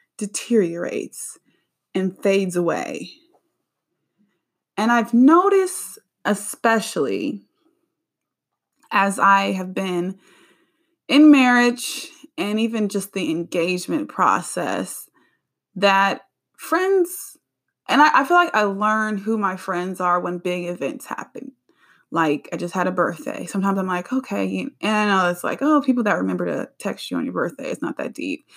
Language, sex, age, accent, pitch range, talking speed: English, female, 20-39, American, 175-235 Hz, 140 wpm